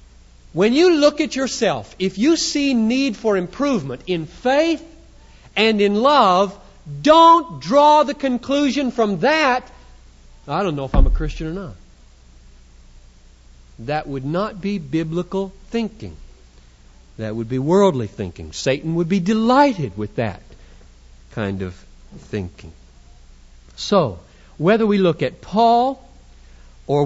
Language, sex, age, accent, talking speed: English, male, 60-79, American, 130 wpm